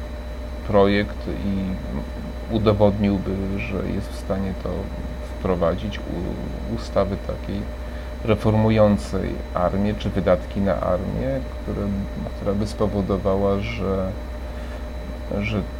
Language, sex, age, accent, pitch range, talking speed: Polish, male, 30-49, native, 75-100 Hz, 90 wpm